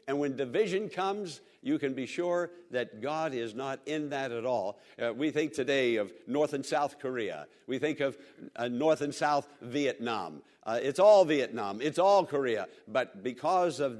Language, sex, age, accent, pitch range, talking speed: English, male, 60-79, American, 135-200 Hz, 185 wpm